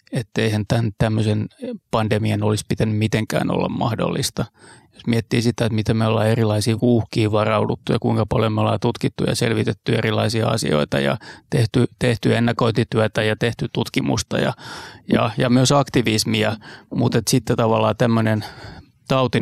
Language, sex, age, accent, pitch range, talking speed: Finnish, male, 30-49, native, 110-125 Hz, 145 wpm